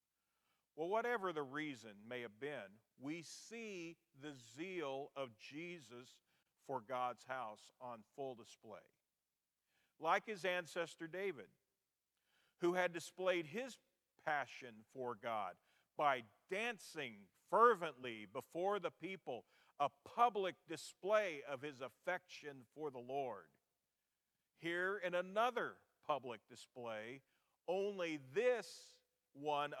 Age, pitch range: 40-59, 125-180 Hz